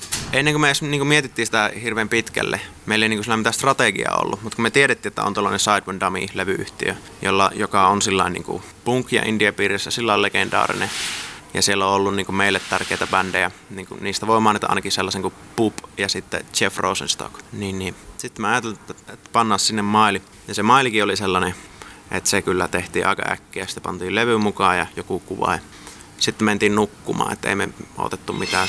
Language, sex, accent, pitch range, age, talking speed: Finnish, male, native, 95-110 Hz, 20-39, 195 wpm